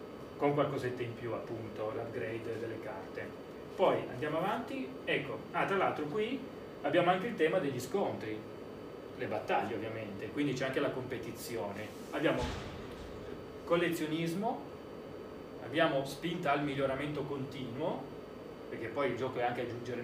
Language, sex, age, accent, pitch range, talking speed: Italian, male, 30-49, native, 130-165 Hz, 130 wpm